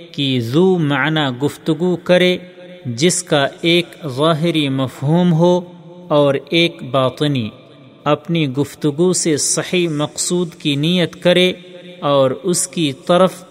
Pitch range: 145-180 Hz